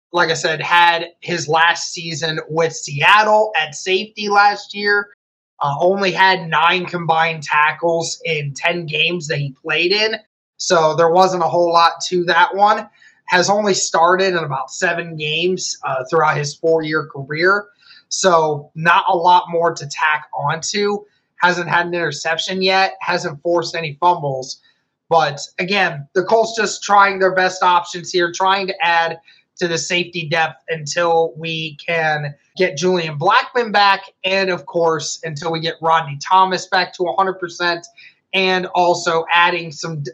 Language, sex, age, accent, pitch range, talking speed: English, male, 20-39, American, 165-190 Hz, 155 wpm